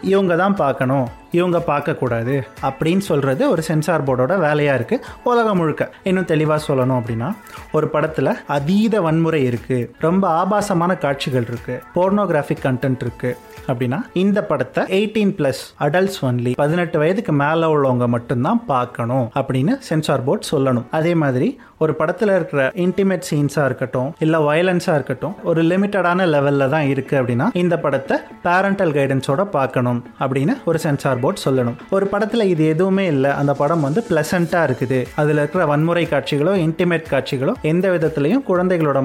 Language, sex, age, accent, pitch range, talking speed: Tamil, male, 30-49, native, 135-180 Hz, 125 wpm